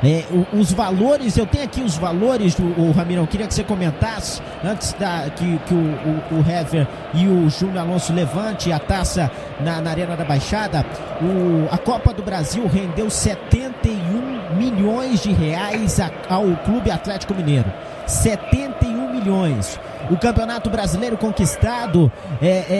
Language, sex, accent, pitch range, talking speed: Portuguese, male, Brazilian, 170-235 Hz, 150 wpm